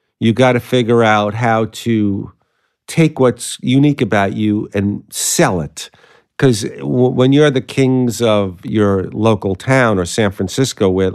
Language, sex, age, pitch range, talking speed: English, male, 50-69, 100-130 Hz, 150 wpm